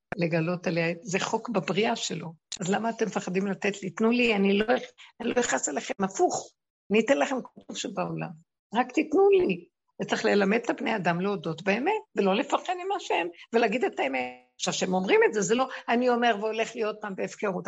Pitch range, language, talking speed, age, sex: 180-240 Hz, Hebrew, 185 wpm, 60-79, female